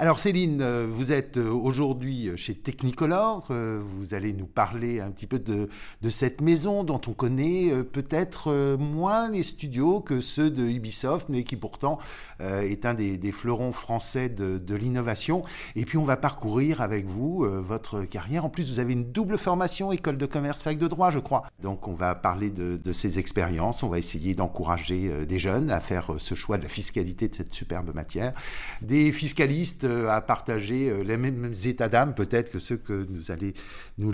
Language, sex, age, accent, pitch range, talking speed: French, male, 50-69, French, 95-135 Hz, 185 wpm